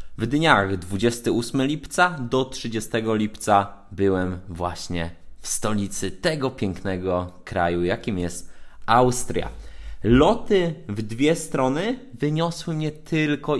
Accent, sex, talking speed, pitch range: native, male, 105 wpm, 100-140 Hz